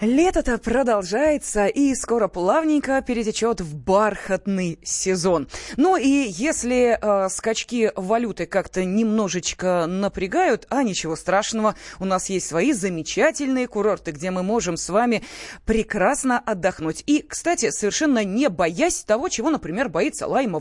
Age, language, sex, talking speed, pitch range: 20-39, Russian, female, 130 wpm, 175-240 Hz